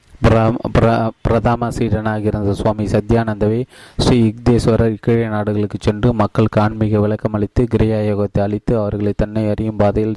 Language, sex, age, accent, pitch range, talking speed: Tamil, male, 20-39, native, 105-115 Hz, 125 wpm